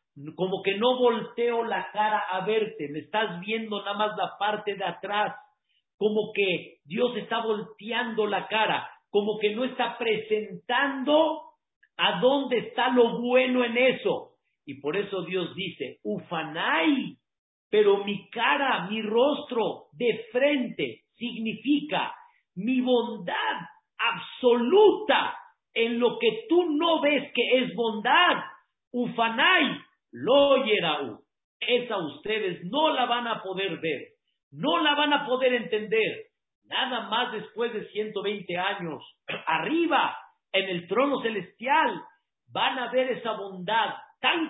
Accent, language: Mexican, Spanish